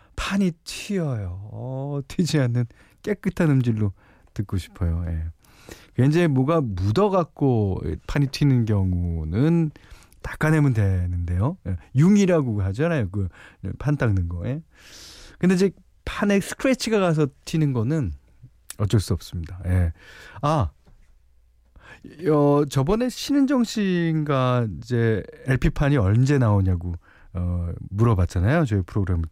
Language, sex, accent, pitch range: Korean, male, native, 90-150 Hz